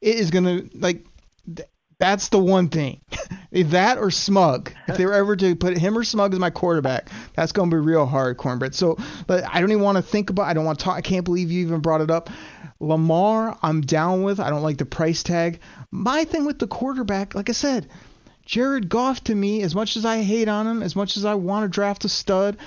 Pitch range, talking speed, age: 165-215 Hz, 235 wpm, 30-49